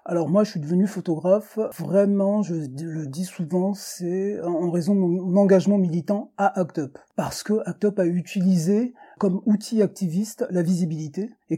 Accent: French